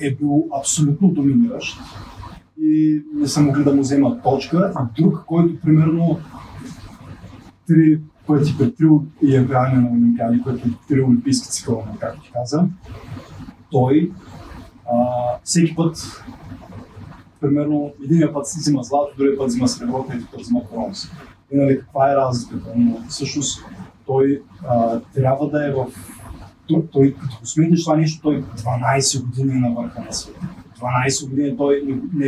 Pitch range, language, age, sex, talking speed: 120-145 Hz, Bulgarian, 30-49, male, 150 wpm